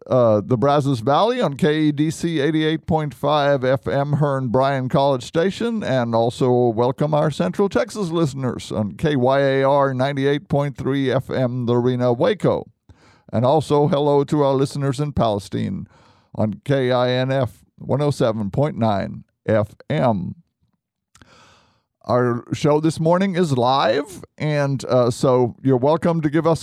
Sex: male